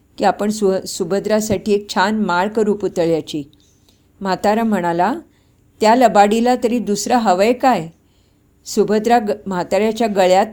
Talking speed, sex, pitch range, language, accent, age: 110 wpm, female, 175-225 Hz, English, Indian, 50-69